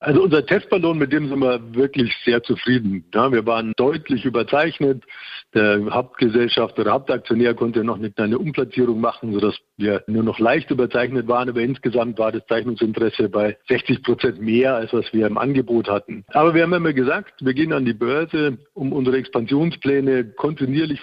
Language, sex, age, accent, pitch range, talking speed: German, male, 60-79, German, 115-140 Hz, 175 wpm